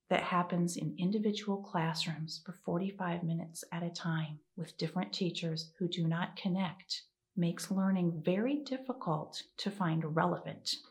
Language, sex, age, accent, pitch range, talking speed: English, female, 40-59, American, 175-215 Hz, 140 wpm